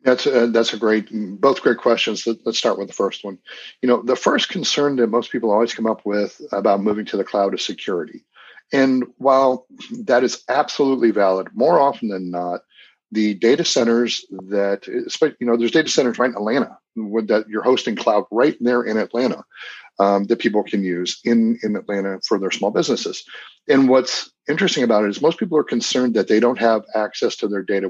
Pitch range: 100-125 Hz